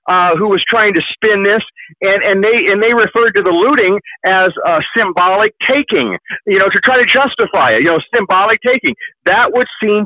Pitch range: 165-220 Hz